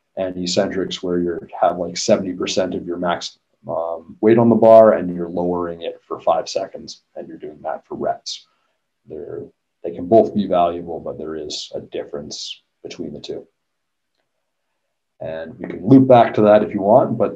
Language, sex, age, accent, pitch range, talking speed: English, male, 30-49, American, 90-105 Hz, 180 wpm